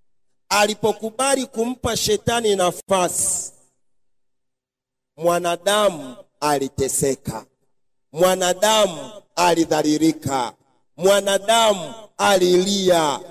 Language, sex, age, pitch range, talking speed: Swahili, male, 40-59, 160-265 Hz, 45 wpm